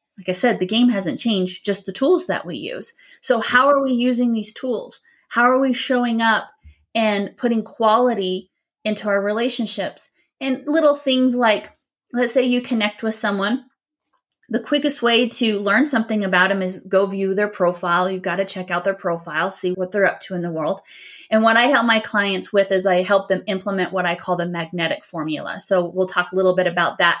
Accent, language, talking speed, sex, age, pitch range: American, English, 210 wpm, female, 30-49, 185-235 Hz